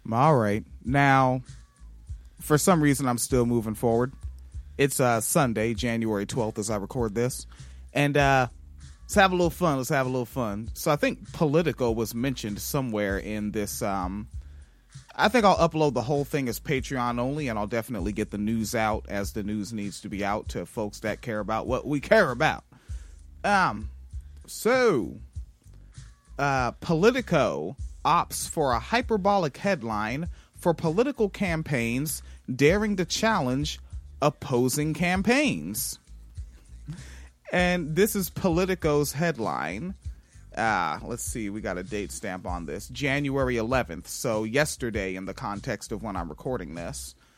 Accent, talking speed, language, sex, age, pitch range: American, 150 wpm, English, male, 30-49, 100-150 Hz